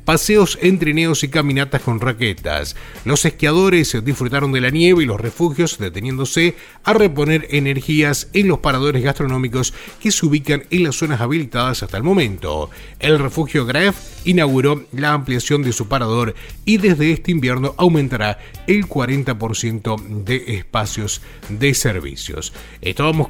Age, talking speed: 30-49, 140 wpm